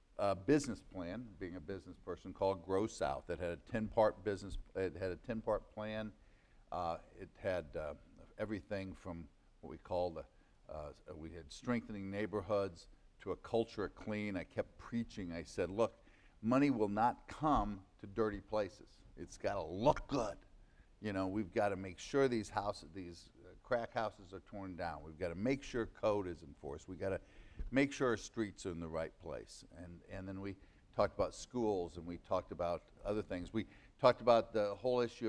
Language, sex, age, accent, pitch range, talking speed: English, male, 60-79, American, 90-110 Hz, 190 wpm